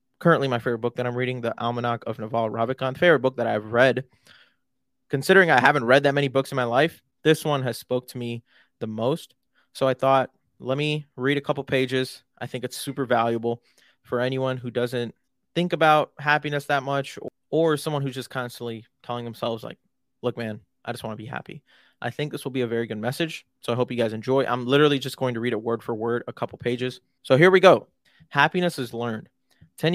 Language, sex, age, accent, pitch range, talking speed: English, male, 20-39, American, 120-145 Hz, 220 wpm